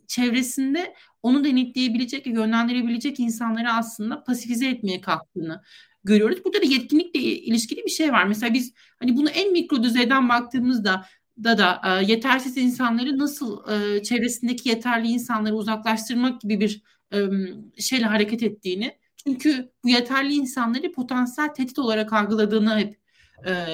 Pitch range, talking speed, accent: 215-260 Hz, 130 wpm, native